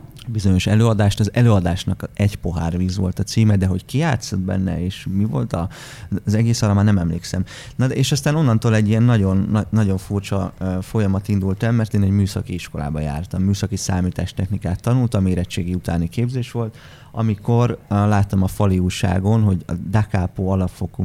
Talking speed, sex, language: 170 wpm, male, Hungarian